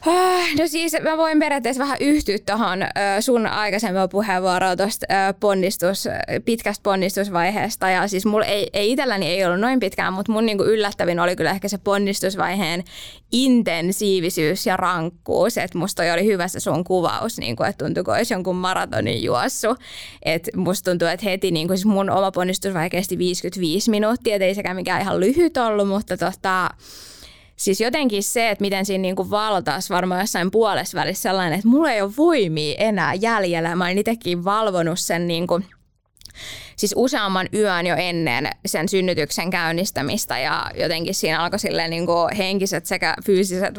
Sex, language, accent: female, Finnish, native